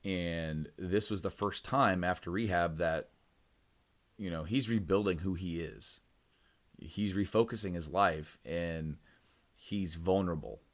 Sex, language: male, English